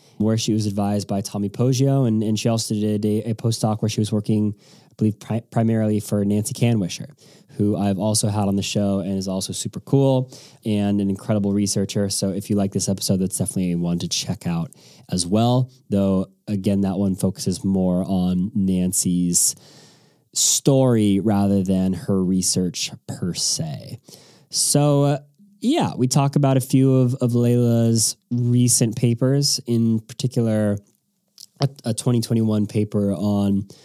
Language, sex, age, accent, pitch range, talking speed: English, male, 20-39, American, 100-125 Hz, 160 wpm